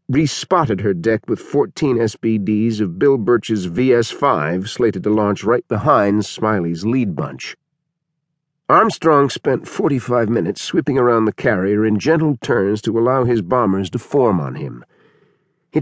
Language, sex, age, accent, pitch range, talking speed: English, male, 50-69, American, 105-145 Hz, 145 wpm